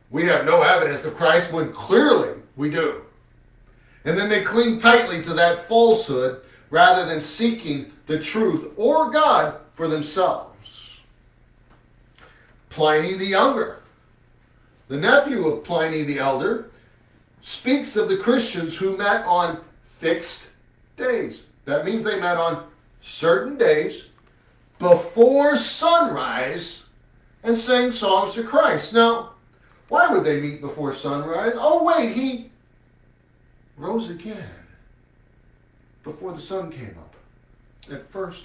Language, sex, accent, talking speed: English, male, American, 120 wpm